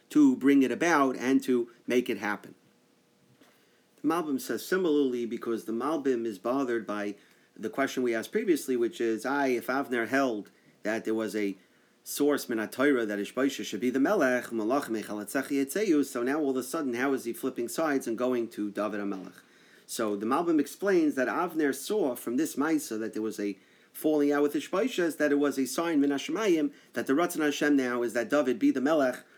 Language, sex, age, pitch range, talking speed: English, male, 40-59, 120-170 Hz, 190 wpm